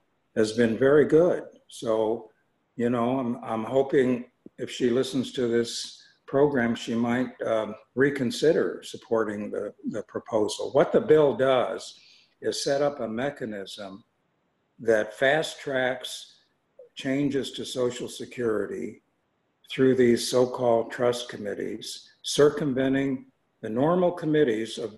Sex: male